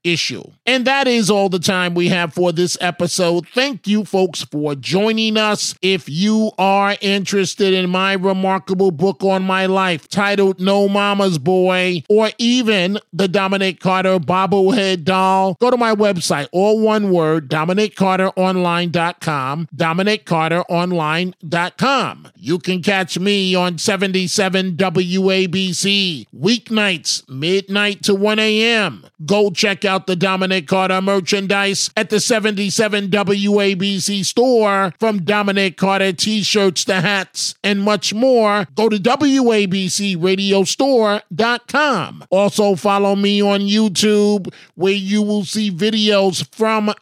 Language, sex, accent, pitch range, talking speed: English, male, American, 185-210 Hz, 125 wpm